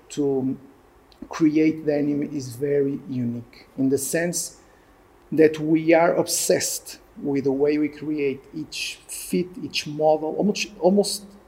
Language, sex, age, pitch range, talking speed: English, male, 40-59, 130-155 Hz, 125 wpm